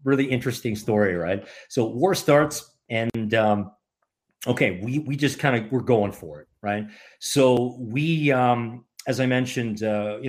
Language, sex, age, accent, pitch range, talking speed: English, male, 40-59, American, 105-130 Hz, 165 wpm